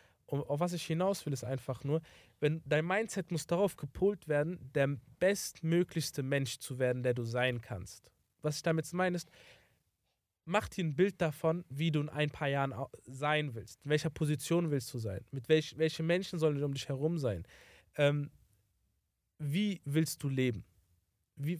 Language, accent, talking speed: German, German, 180 wpm